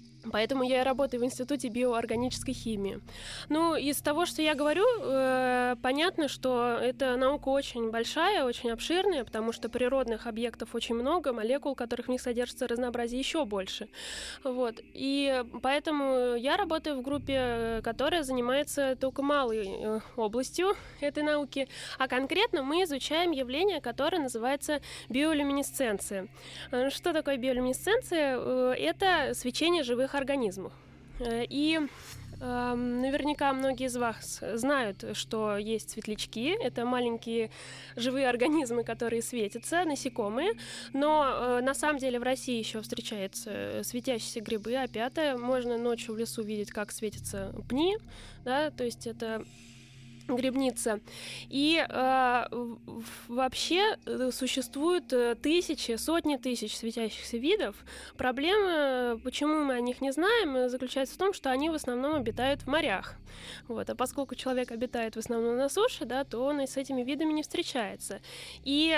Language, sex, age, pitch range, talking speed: Russian, female, 10-29, 235-290 Hz, 130 wpm